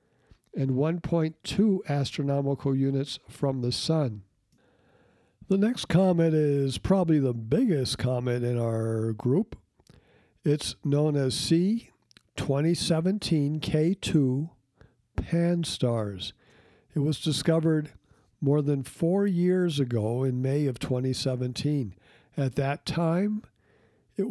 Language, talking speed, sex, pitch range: English, 100 wpm, male, 130-165 Hz